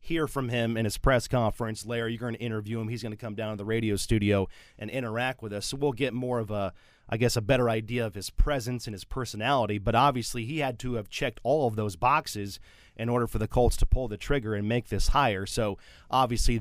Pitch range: 110-130 Hz